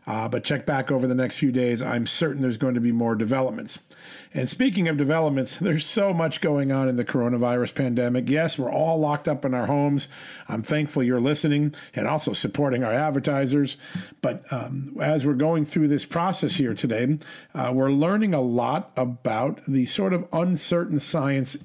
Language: English